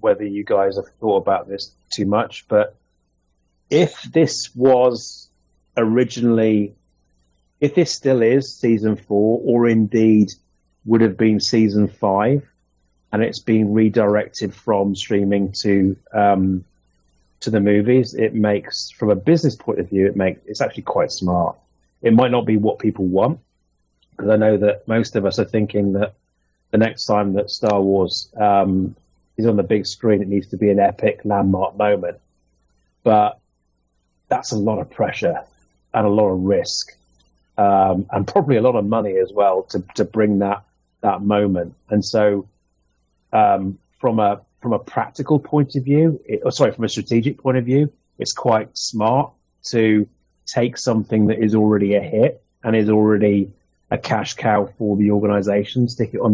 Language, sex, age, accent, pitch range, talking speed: English, male, 30-49, British, 95-110 Hz, 165 wpm